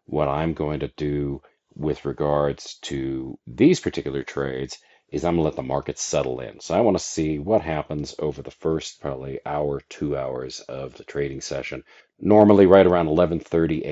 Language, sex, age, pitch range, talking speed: English, male, 40-59, 70-85 Hz, 180 wpm